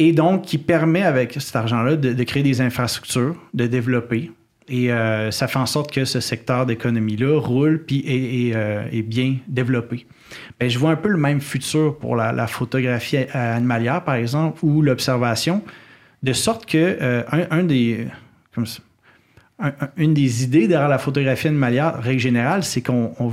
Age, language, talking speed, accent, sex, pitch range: 30-49, French, 180 wpm, Canadian, male, 125-155 Hz